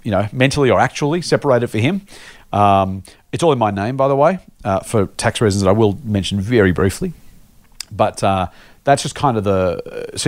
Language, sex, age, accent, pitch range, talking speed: English, male, 40-59, Australian, 100-135 Hz, 210 wpm